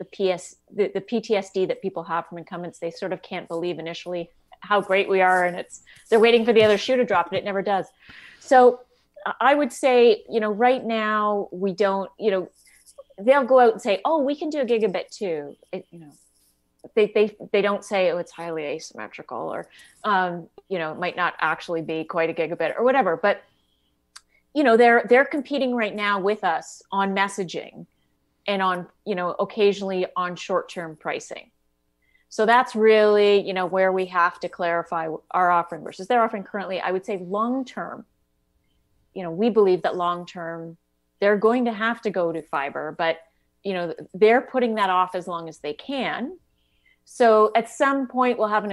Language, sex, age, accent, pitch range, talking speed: English, female, 30-49, American, 175-220 Hz, 195 wpm